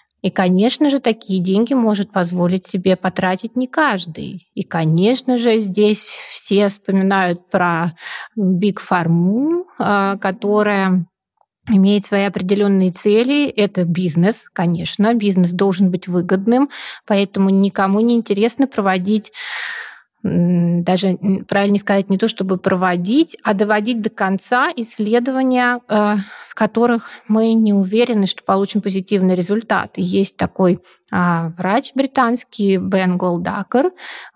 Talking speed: 110 wpm